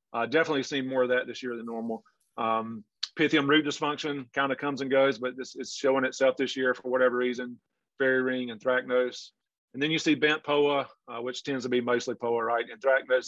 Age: 40-59